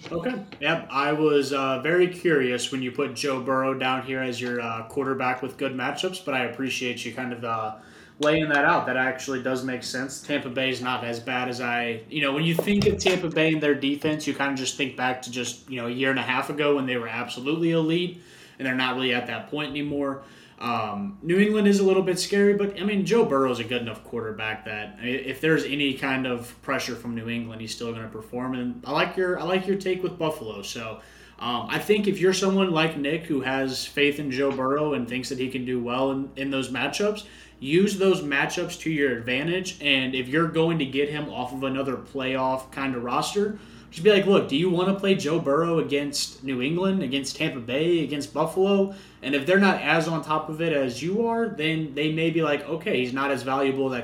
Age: 20-39